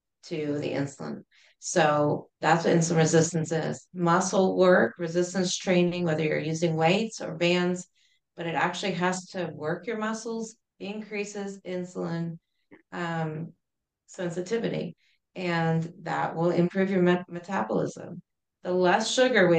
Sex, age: female, 30-49